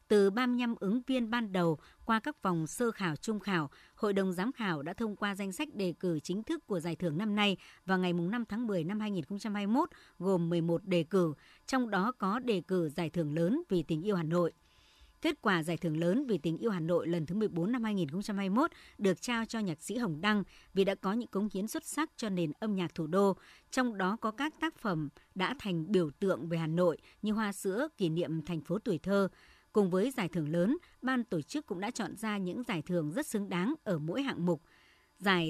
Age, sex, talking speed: 60-79, male, 230 wpm